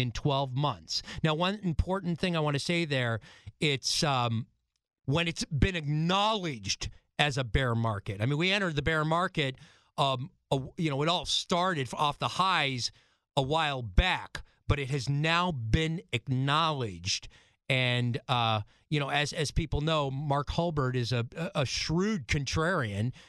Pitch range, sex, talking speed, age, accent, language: 125-175 Hz, male, 160 wpm, 40-59, American, English